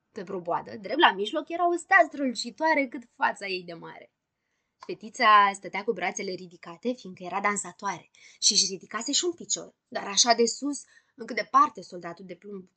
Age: 20-39